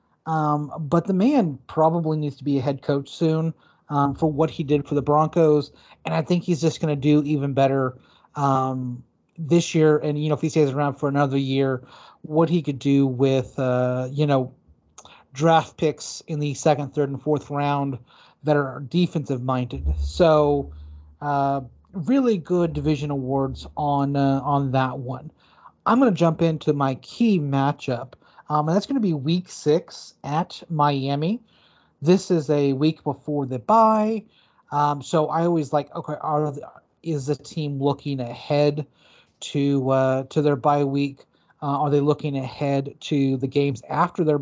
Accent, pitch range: American, 140-160 Hz